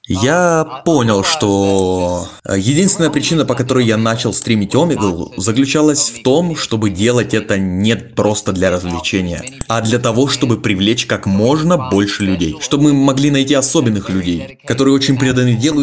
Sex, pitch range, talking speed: male, 105-135 Hz, 150 wpm